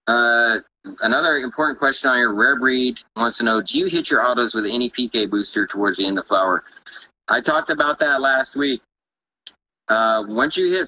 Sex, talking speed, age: male, 195 wpm, 30-49